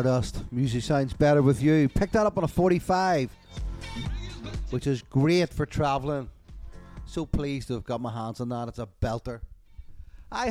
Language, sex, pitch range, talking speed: English, male, 110-155 Hz, 165 wpm